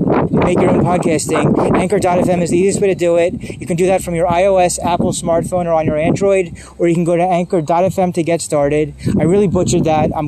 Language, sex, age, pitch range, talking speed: English, male, 30-49, 155-180 Hz, 230 wpm